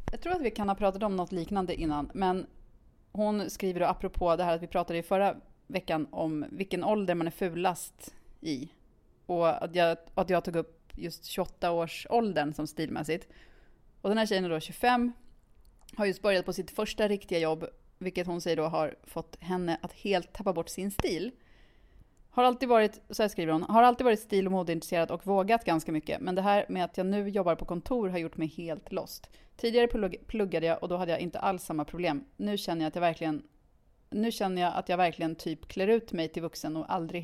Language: English